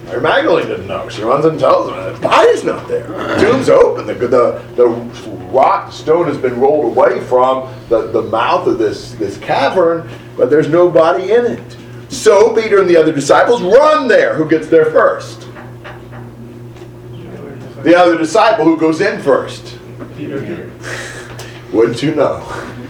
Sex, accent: male, American